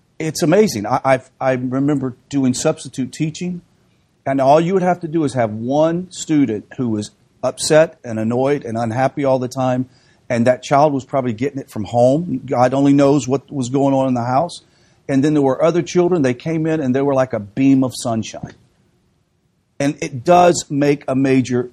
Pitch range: 125-160 Hz